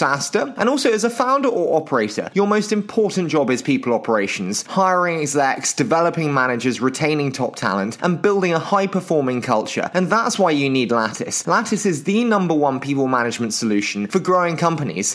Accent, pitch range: British, 135-190 Hz